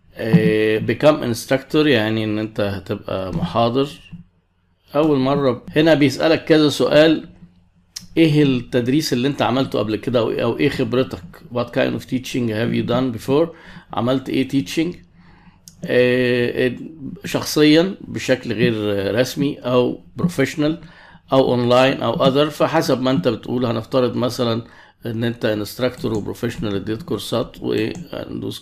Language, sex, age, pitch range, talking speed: Arabic, male, 50-69, 115-145 Hz, 125 wpm